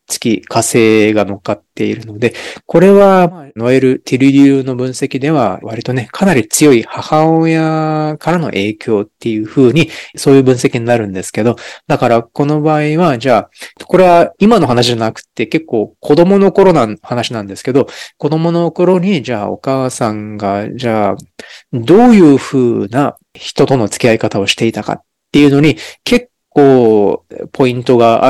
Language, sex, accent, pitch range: Japanese, male, native, 110-145 Hz